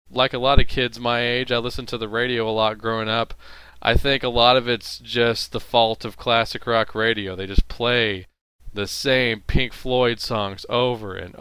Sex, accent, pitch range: male, American, 100-135 Hz